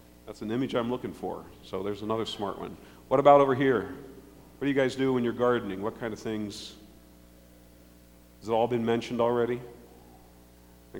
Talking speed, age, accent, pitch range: 185 wpm, 50-69, American, 100-135 Hz